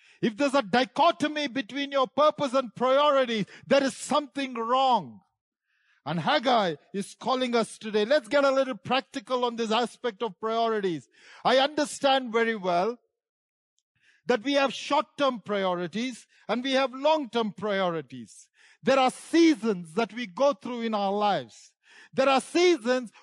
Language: English